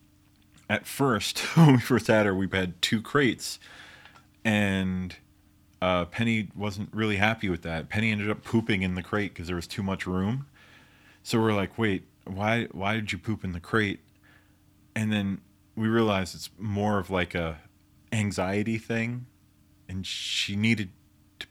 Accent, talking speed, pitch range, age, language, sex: American, 165 wpm, 95-115 Hz, 30-49, English, male